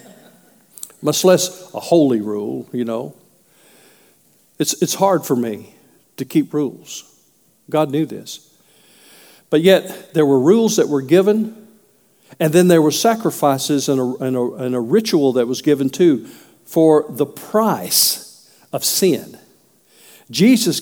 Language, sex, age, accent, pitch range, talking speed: English, male, 50-69, American, 180-240 Hz, 140 wpm